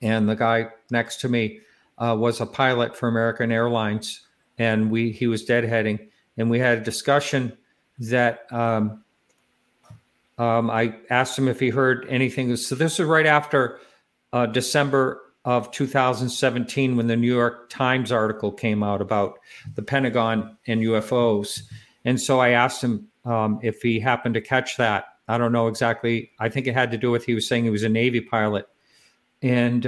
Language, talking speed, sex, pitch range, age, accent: English, 175 wpm, male, 115-130 Hz, 50-69, American